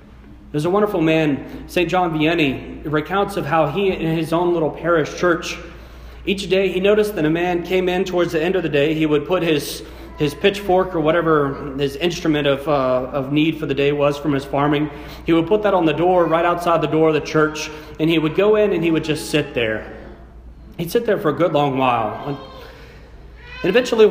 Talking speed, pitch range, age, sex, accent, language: 220 wpm, 140-180 Hz, 40-59, male, American, English